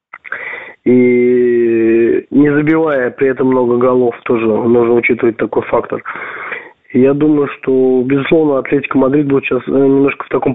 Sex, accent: male, native